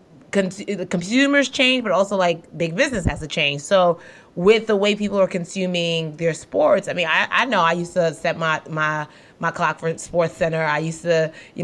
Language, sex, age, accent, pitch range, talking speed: English, female, 30-49, American, 170-220 Hz, 205 wpm